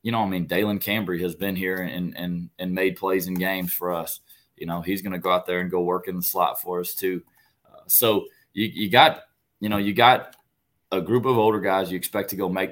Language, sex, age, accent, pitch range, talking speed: English, male, 20-39, American, 85-95 Hz, 255 wpm